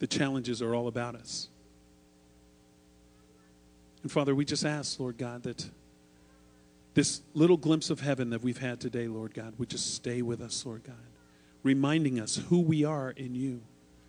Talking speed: 165 wpm